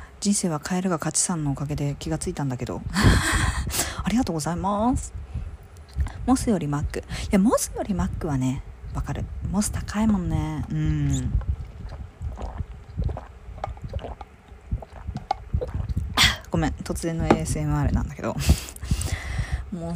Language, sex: Japanese, female